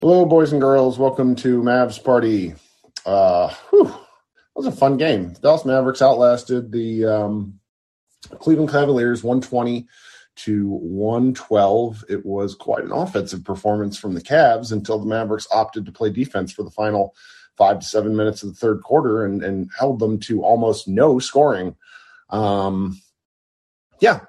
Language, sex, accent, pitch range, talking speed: English, male, American, 95-130 Hz, 155 wpm